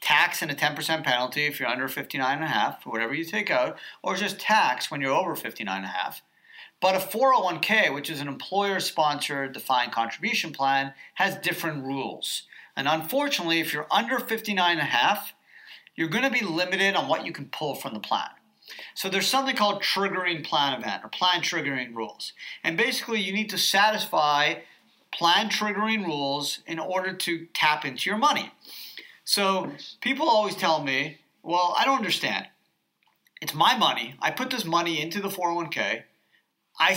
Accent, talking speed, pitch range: American, 175 wpm, 150-205 Hz